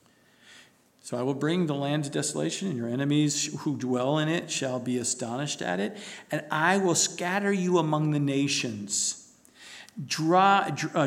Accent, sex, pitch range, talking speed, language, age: American, male, 155-190 Hz, 155 wpm, English, 50-69